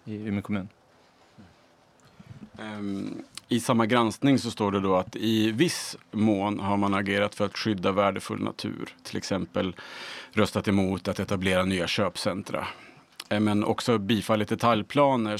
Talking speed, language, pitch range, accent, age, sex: 120 wpm, Swedish, 95-110 Hz, Norwegian, 30-49, male